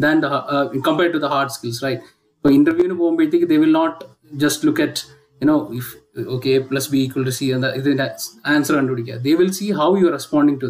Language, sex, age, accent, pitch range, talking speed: Malayalam, male, 20-39, native, 135-195 Hz, 230 wpm